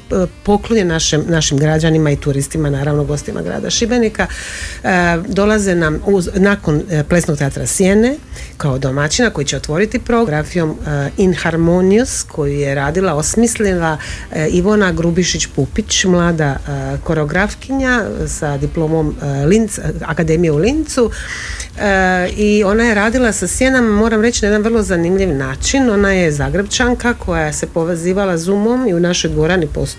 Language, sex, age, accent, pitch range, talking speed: Croatian, female, 40-59, native, 150-195 Hz, 145 wpm